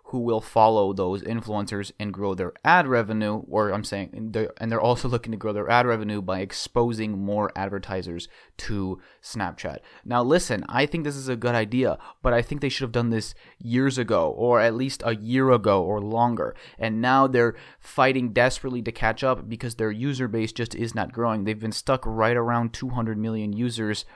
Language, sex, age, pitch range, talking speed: English, male, 30-49, 110-130 Hz, 195 wpm